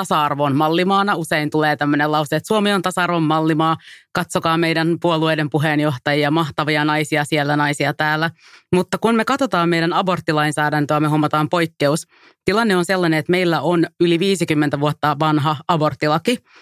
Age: 30-49